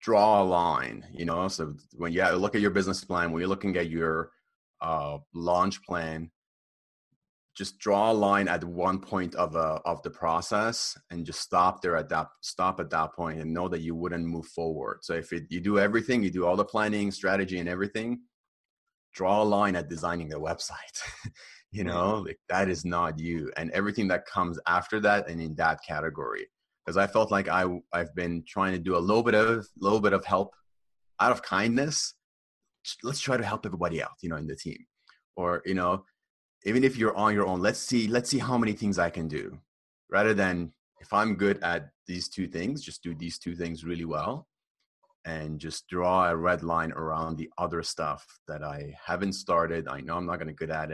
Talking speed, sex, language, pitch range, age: 210 wpm, male, English, 85-100 Hz, 30-49